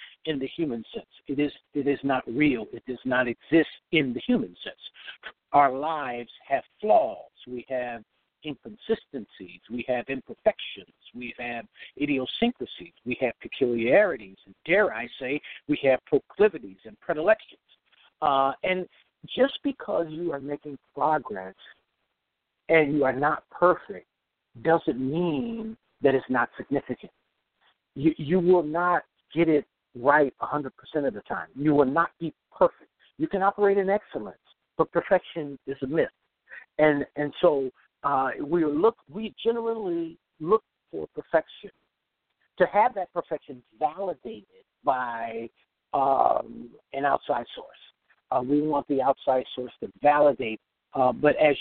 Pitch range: 130-180 Hz